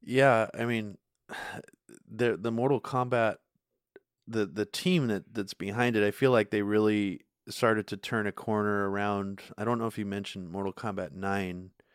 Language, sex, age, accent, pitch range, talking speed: English, male, 20-39, American, 100-115 Hz, 170 wpm